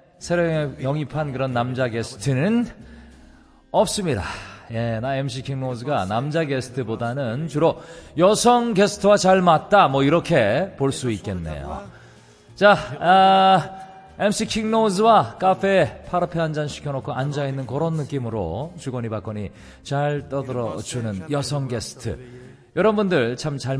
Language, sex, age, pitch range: Korean, male, 40-59, 115-180 Hz